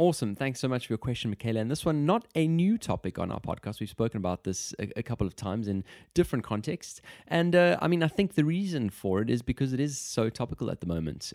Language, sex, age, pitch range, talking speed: English, male, 20-39, 95-125 Hz, 260 wpm